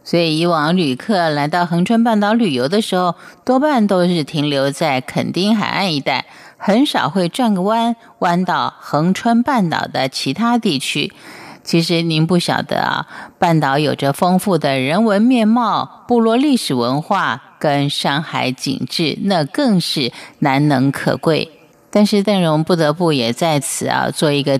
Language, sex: Chinese, female